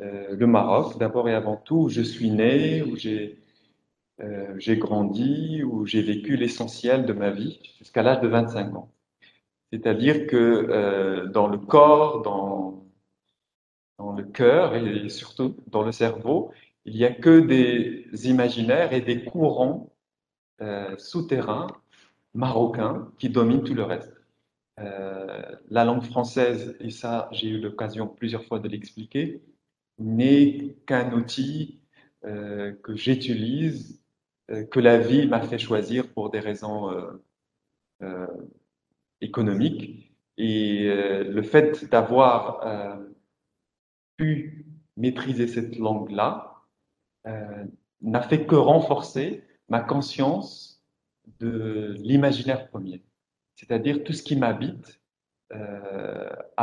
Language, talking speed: Spanish, 125 wpm